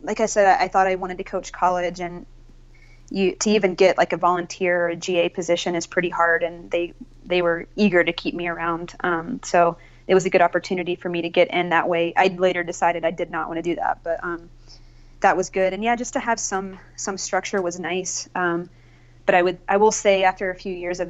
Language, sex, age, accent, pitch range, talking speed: English, female, 20-39, American, 170-190 Hz, 240 wpm